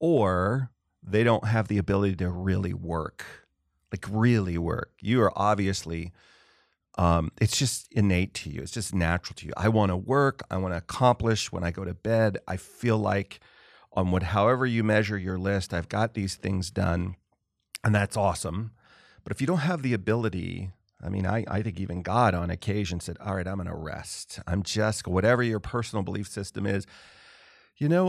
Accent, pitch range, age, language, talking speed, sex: American, 95-120 Hz, 40-59, English, 190 wpm, male